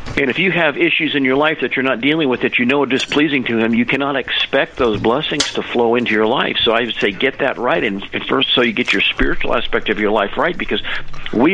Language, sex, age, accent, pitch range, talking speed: English, male, 50-69, American, 105-135 Hz, 270 wpm